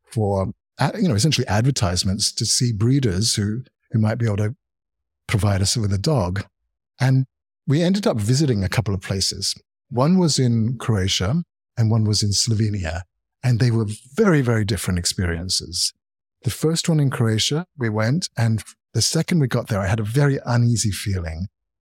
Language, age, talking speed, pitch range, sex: English, 50-69, 175 wpm, 105-130 Hz, male